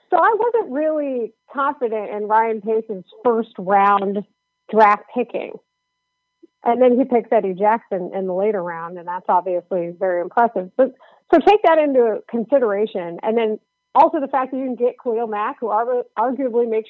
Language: English